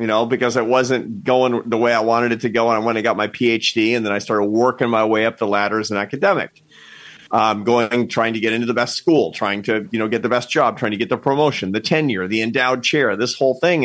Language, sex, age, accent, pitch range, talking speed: English, male, 40-59, American, 115-140 Hz, 275 wpm